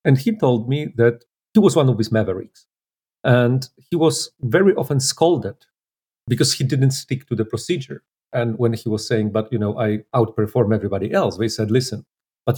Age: 40-59